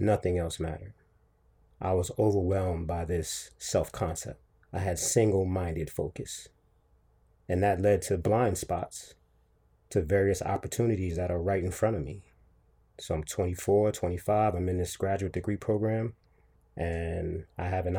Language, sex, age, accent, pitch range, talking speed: English, male, 30-49, American, 90-105 Hz, 145 wpm